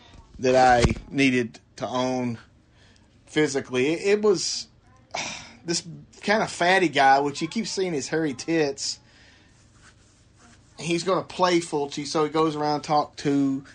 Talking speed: 150 wpm